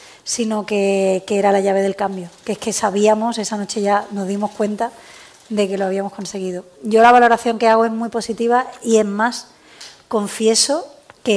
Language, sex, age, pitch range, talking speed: Spanish, female, 20-39, 200-235 Hz, 190 wpm